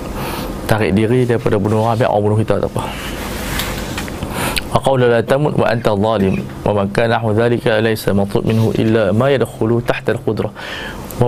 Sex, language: male, Malay